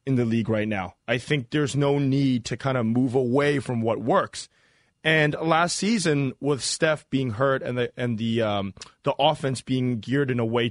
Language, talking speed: English, 205 wpm